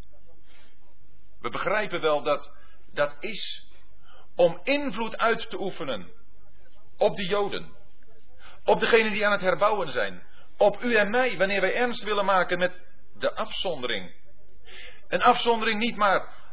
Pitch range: 165-205 Hz